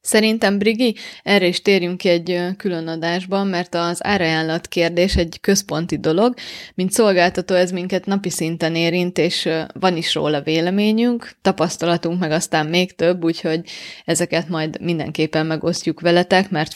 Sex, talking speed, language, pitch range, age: female, 145 wpm, Hungarian, 165-200 Hz, 20-39